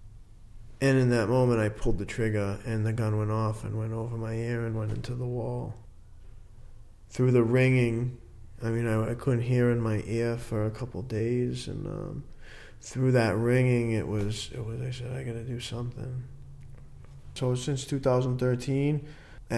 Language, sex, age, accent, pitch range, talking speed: English, male, 20-39, American, 110-125 Hz, 170 wpm